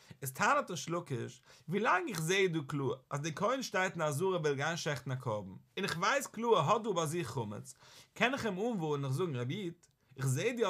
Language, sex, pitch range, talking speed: English, male, 135-185 Hz, 215 wpm